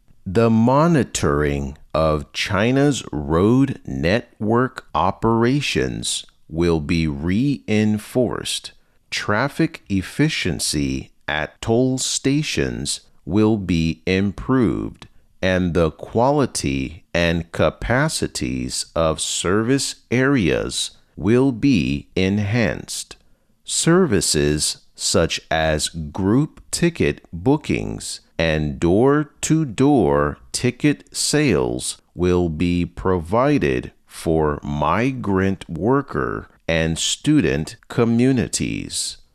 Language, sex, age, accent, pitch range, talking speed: English, male, 40-59, American, 80-130 Hz, 75 wpm